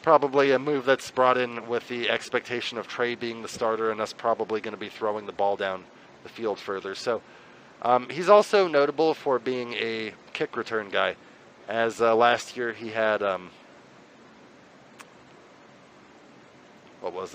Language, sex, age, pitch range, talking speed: English, male, 30-49, 105-130 Hz, 165 wpm